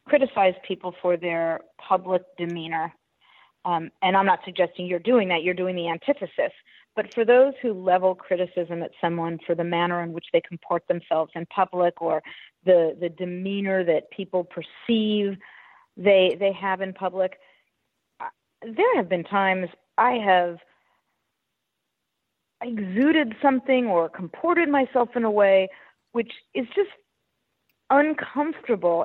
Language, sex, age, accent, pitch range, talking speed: English, female, 40-59, American, 180-245 Hz, 135 wpm